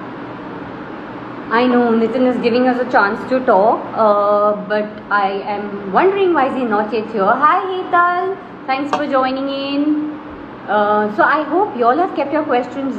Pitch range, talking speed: 205-295 Hz, 170 wpm